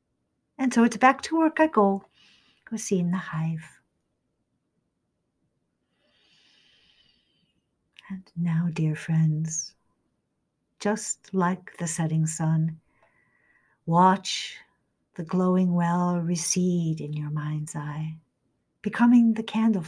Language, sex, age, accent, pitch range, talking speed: English, female, 50-69, American, 170-225 Hz, 105 wpm